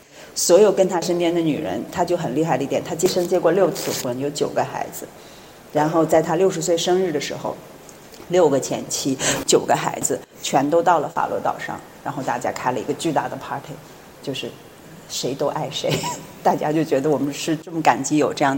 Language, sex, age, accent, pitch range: Chinese, female, 30-49, native, 145-175 Hz